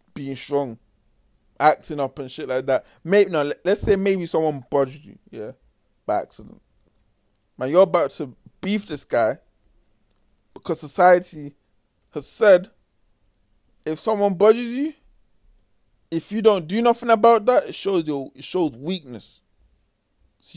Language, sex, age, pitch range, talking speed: English, male, 20-39, 115-185 Hz, 140 wpm